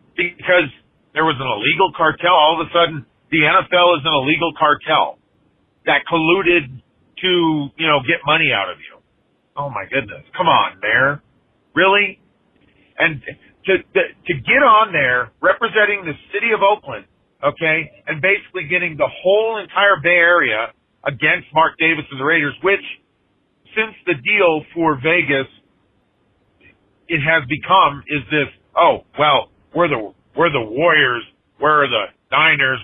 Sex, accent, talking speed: male, American, 145 wpm